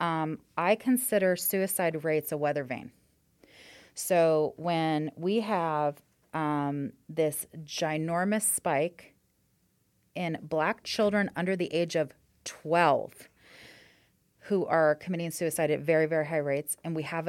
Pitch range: 145-175 Hz